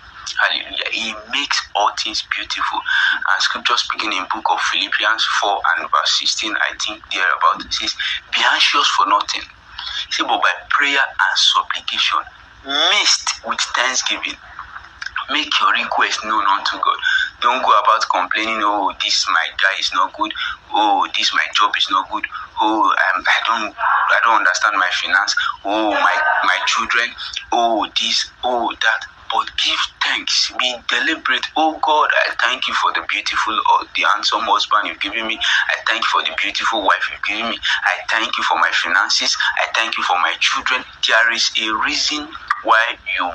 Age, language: 30-49, English